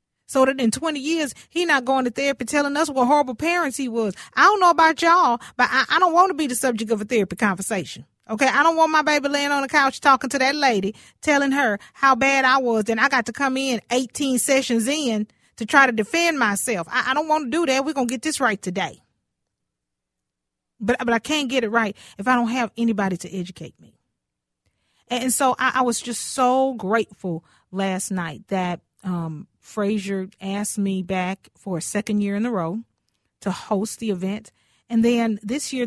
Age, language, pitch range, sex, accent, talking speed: 40-59, English, 195-270 Hz, female, American, 215 wpm